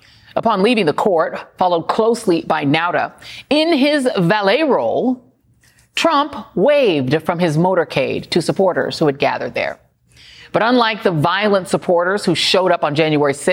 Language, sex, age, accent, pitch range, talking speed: English, female, 40-59, American, 170-245 Hz, 145 wpm